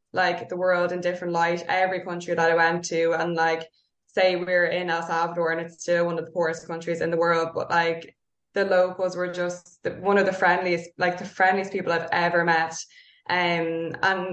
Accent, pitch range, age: Irish, 170-195 Hz, 10-29